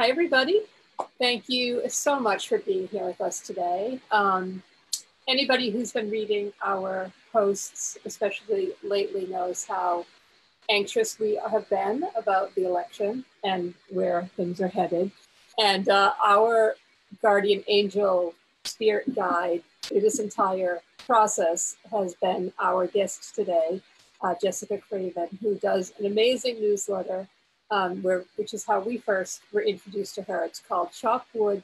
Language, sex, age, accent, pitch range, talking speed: English, female, 40-59, American, 185-225 Hz, 140 wpm